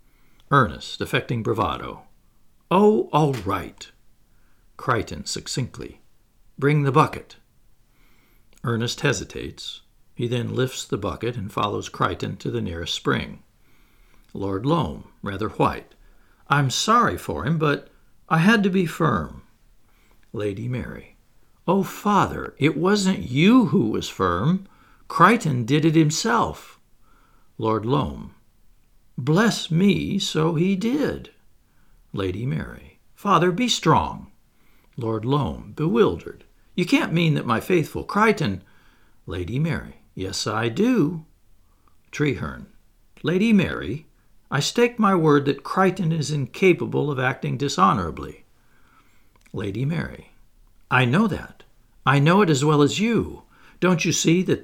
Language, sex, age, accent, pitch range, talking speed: English, male, 60-79, American, 120-190 Hz, 120 wpm